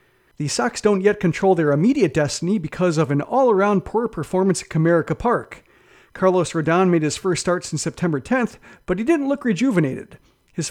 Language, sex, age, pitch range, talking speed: English, male, 40-59, 160-205 Hz, 180 wpm